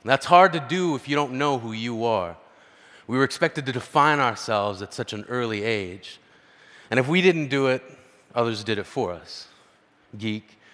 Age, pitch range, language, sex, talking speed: 30-49, 110-160 Hz, Arabic, male, 190 wpm